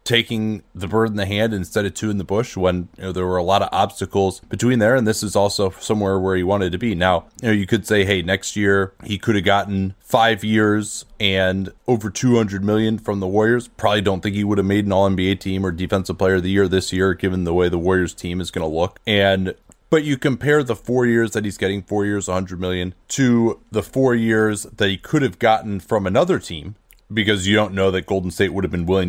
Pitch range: 95-110 Hz